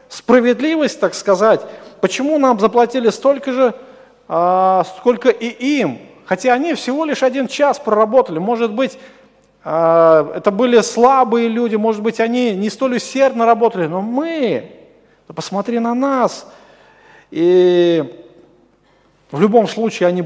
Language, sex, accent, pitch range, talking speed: Russian, male, native, 175-245 Hz, 120 wpm